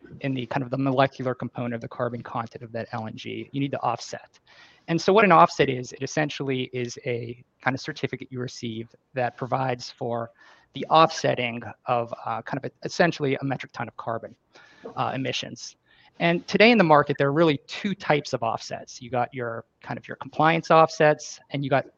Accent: American